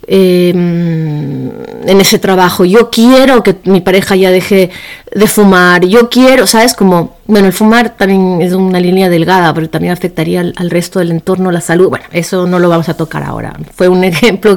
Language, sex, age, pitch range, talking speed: Spanish, female, 30-49, 175-215 Hz, 185 wpm